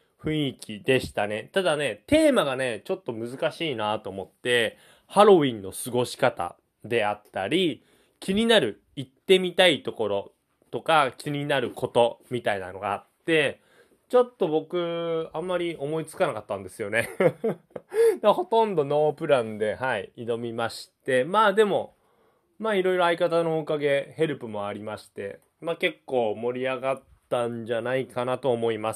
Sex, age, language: male, 20-39, Japanese